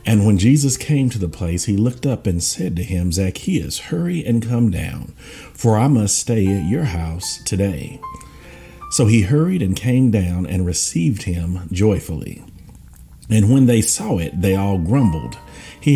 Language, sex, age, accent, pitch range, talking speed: English, male, 50-69, American, 85-115 Hz, 175 wpm